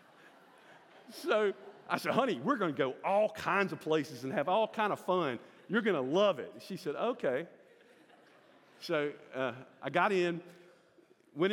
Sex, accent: male, American